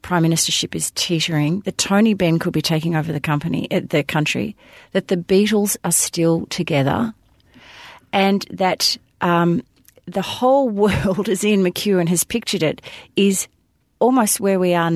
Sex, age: female, 40-59